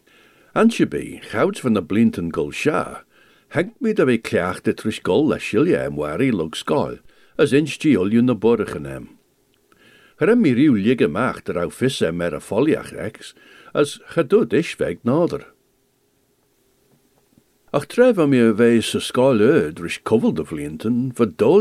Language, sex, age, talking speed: English, male, 60-79, 135 wpm